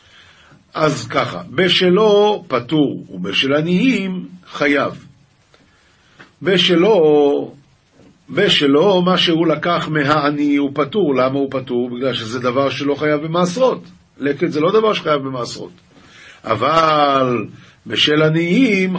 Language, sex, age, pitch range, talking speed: Hebrew, male, 50-69, 135-180 Hz, 100 wpm